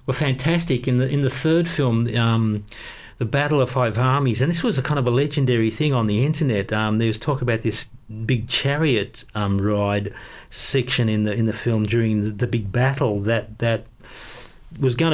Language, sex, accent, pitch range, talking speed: English, male, Australian, 115-135 Hz, 200 wpm